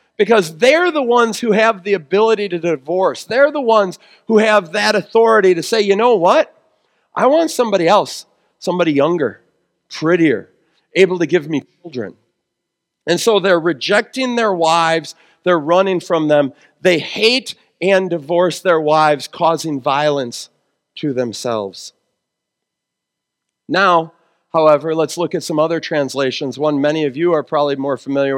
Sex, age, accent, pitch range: male, 40-59, American, 165-215 Hz